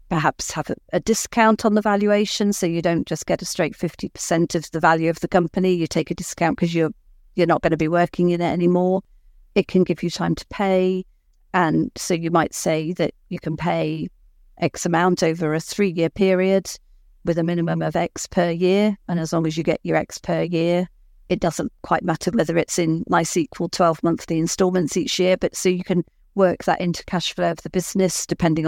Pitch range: 165-185 Hz